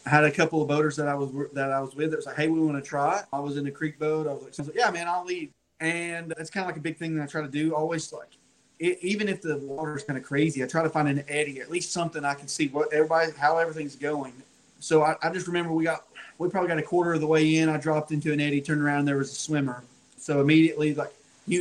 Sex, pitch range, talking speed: male, 140-165 Hz, 295 wpm